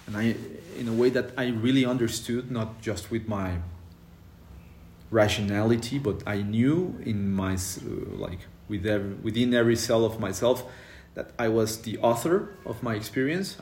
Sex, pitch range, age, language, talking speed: male, 85-115 Hz, 30-49, English, 160 wpm